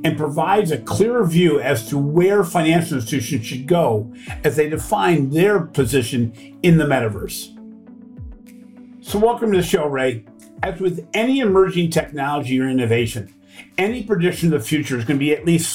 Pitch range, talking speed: 130-175 Hz, 170 wpm